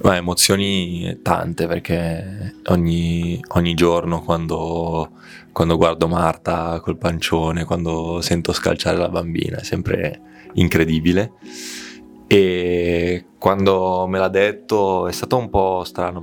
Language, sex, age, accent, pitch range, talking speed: Italian, male, 20-39, native, 80-90 Hz, 110 wpm